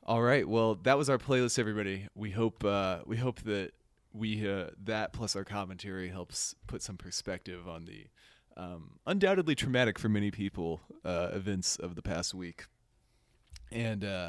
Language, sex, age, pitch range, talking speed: English, male, 30-49, 95-115 Hz, 165 wpm